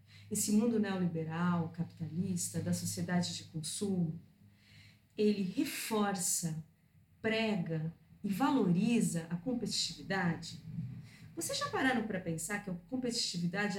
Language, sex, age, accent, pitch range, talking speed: Portuguese, female, 40-59, Brazilian, 170-225 Hz, 100 wpm